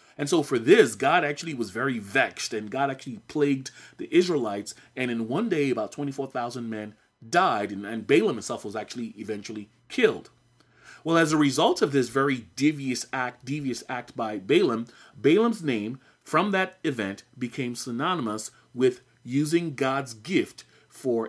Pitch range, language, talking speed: 115-150 Hz, English, 160 wpm